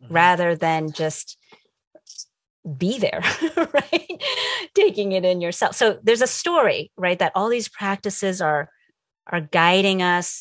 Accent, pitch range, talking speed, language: American, 175-215 Hz, 135 wpm, English